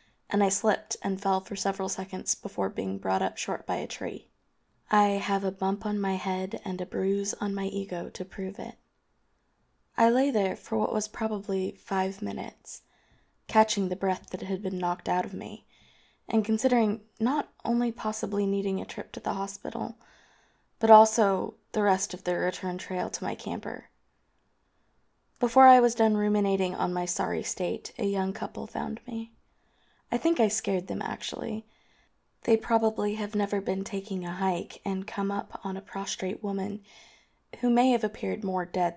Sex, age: female, 20-39